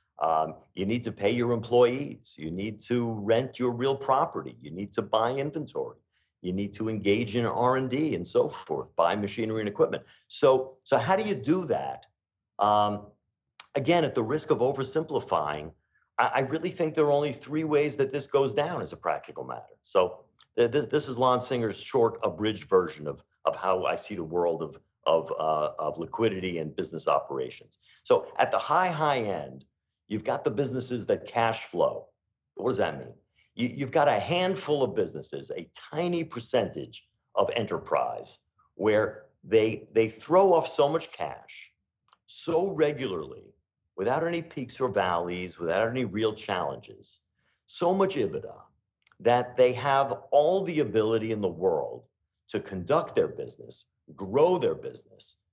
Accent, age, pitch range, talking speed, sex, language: American, 50-69, 110-155 Hz, 165 wpm, male, English